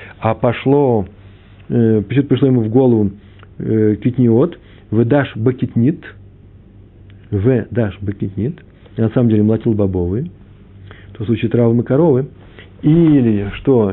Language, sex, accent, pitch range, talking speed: Russian, male, native, 100-125 Hz, 115 wpm